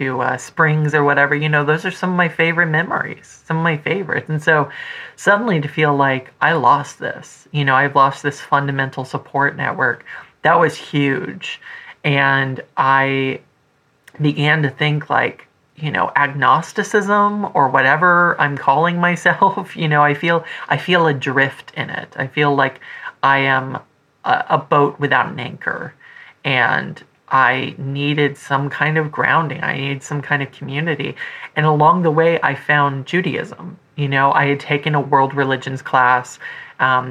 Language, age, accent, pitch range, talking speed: English, 30-49, American, 135-150 Hz, 165 wpm